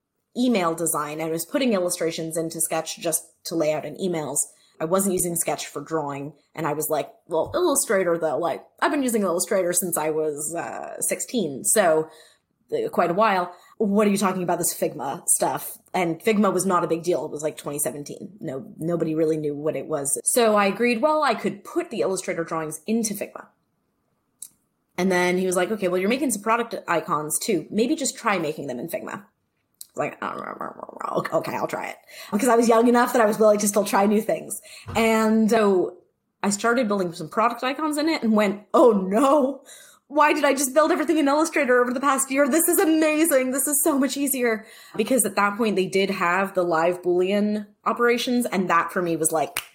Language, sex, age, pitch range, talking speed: English, female, 20-39, 165-235 Hz, 205 wpm